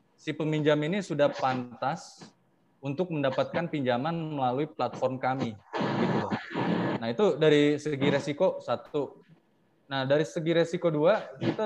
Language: Indonesian